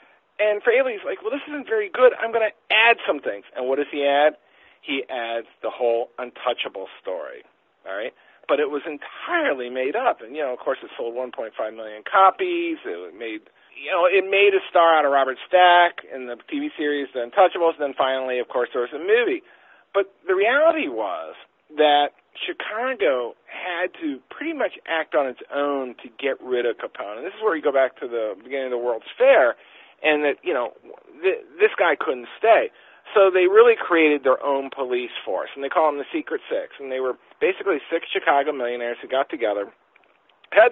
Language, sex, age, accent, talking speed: English, male, 40-59, American, 200 wpm